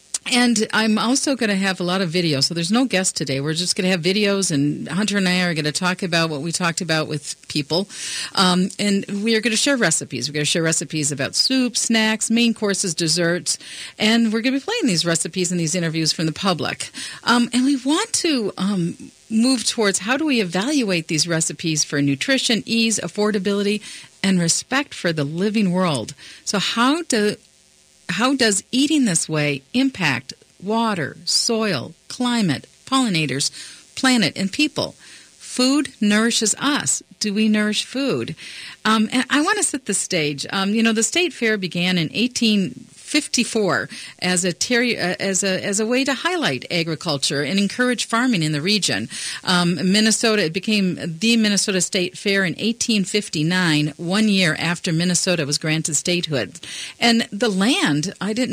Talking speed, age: 180 wpm, 40-59